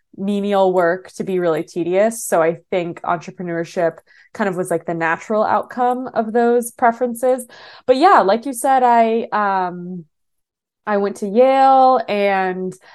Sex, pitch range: female, 175-215 Hz